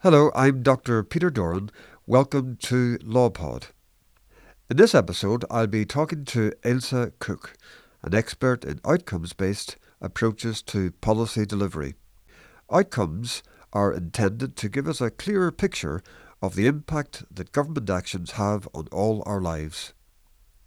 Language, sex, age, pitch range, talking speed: English, male, 60-79, 90-135 Hz, 130 wpm